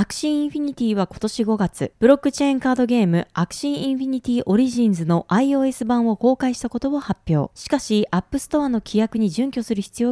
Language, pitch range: Japanese, 185-260 Hz